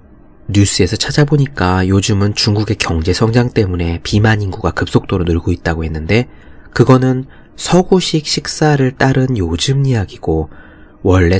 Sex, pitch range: male, 85-120 Hz